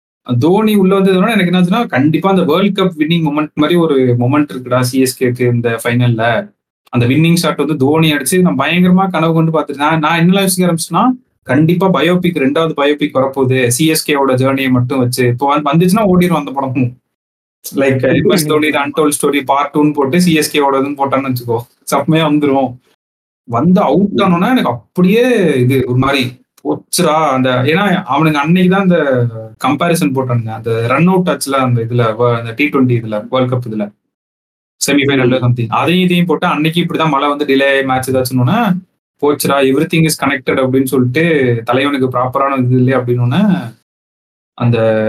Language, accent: Tamil, native